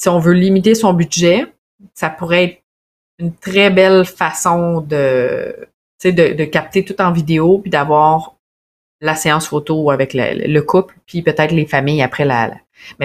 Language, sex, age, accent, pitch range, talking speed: French, female, 30-49, Canadian, 150-185 Hz, 170 wpm